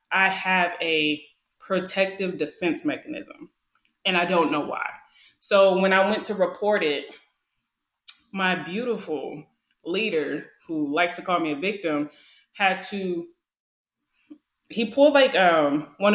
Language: English